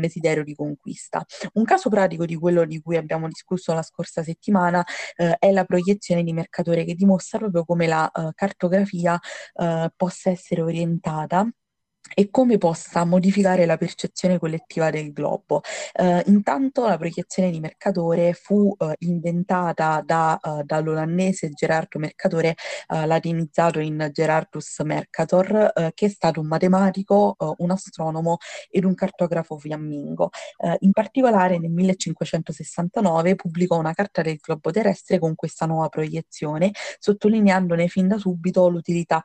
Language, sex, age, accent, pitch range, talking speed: Italian, female, 20-39, native, 160-185 Hz, 140 wpm